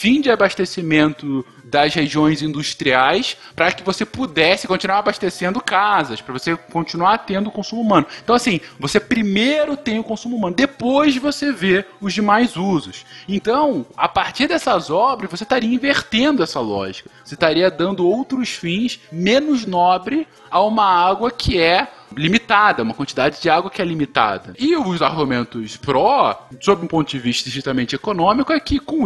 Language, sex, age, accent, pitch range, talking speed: Portuguese, male, 20-39, Brazilian, 145-220 Hz, 160 wpm